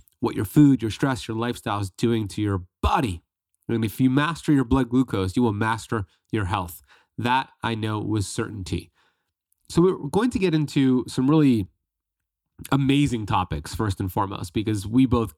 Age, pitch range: 30-49, 95-130 Hz